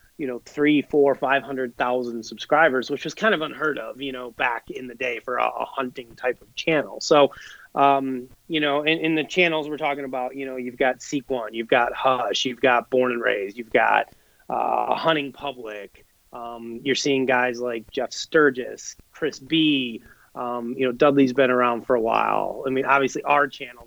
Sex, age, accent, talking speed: male, 30-49, American, 195 wpm